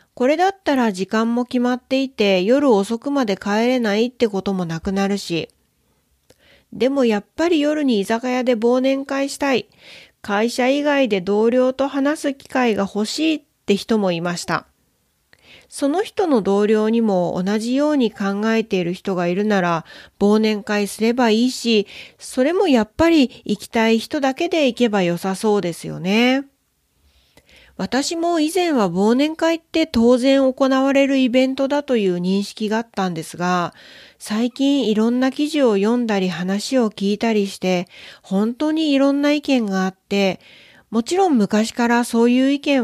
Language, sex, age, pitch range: Japanese, female, 40-59, 195-265 Hz